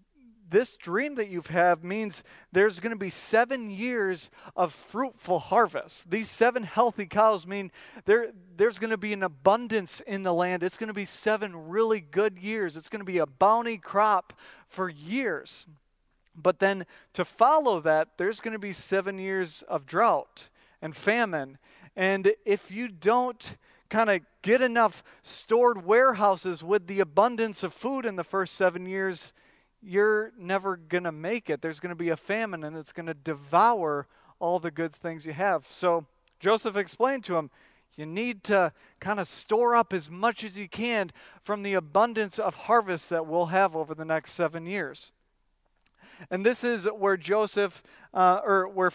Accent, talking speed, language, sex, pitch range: American, 175 wpm, English, male, 175-220 Hz